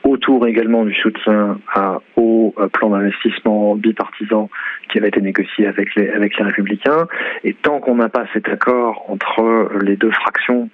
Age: 40-59